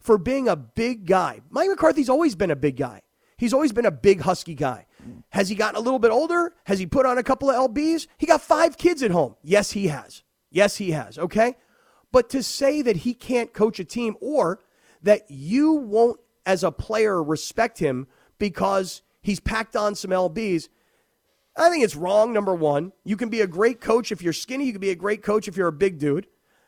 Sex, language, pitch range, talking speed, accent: male, English, 175-240 Hz, 220 wpm, American